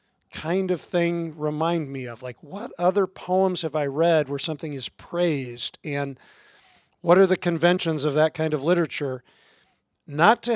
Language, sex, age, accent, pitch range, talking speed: English, male, 40-59, American, 145-175 Hz, 165 wpm